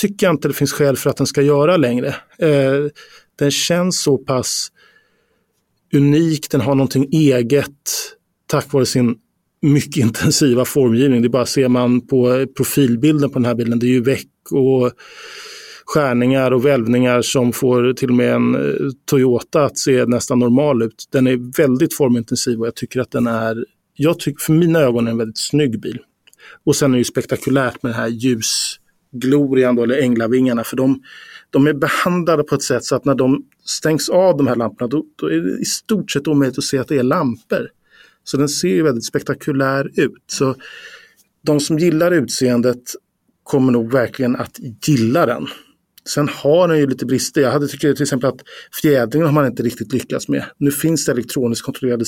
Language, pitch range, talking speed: Swedish, 125-150 Hz, 190 wpm